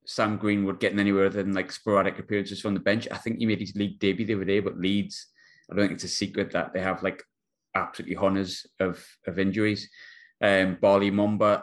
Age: 20-39